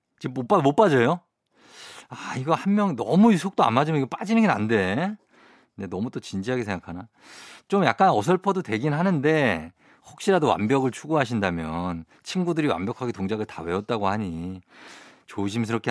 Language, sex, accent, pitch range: Korean, male, native, 105-155 Hz